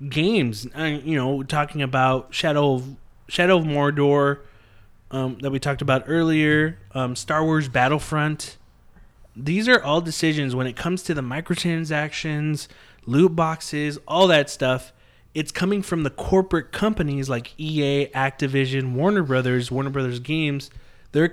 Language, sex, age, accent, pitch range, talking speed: English, male, 20-39, American, 130-170 Hz, 145 wpm